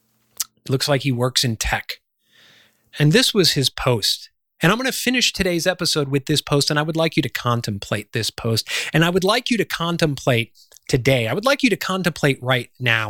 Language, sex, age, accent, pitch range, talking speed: English, male, 30-49, American, 115-160 Hz, 210 wpm